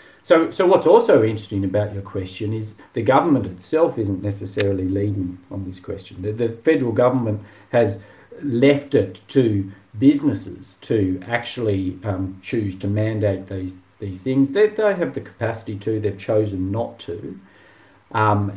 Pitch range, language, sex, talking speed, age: 100-125 Hz, English, male, 150 wpm, 50-69